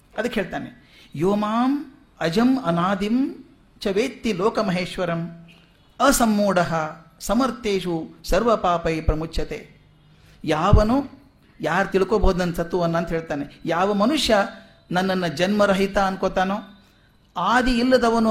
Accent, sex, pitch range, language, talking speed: native, male, 165-215 Hz, Kannada, 90 wpm